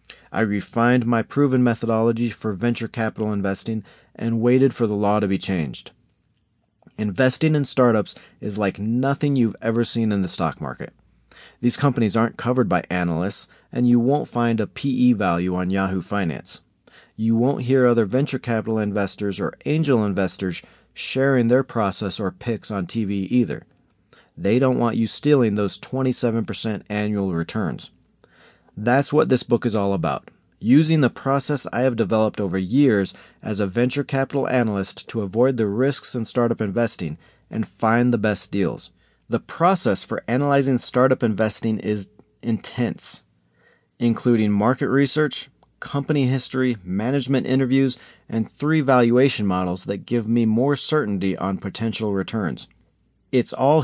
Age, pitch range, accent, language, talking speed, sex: 40-59, 105-130 Hz, American, English, 150 wpm, male